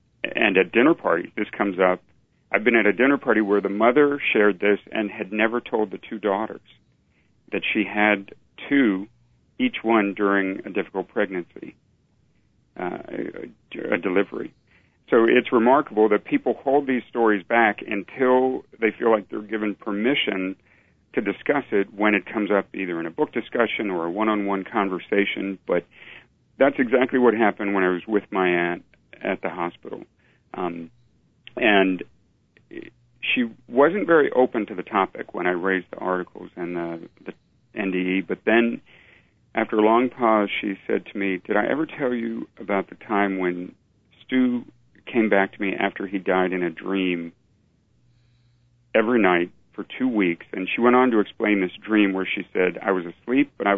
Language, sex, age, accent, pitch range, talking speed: English, male, 50-69, American, 95-120 Hz, 170 wpm